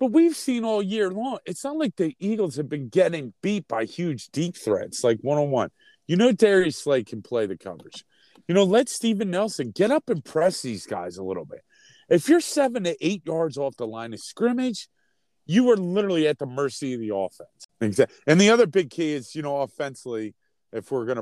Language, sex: English, male